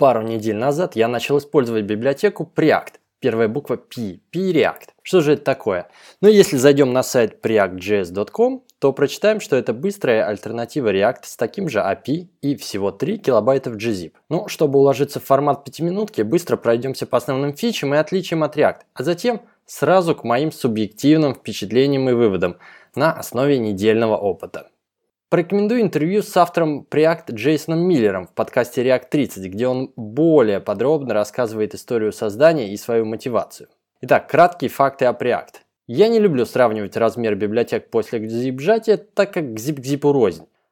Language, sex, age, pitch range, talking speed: Russian, male, 20-39, 115-165 Hz, 160 wpm